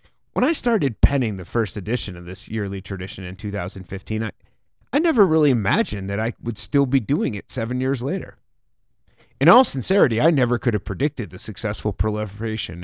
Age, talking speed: 30-49, 180 wpm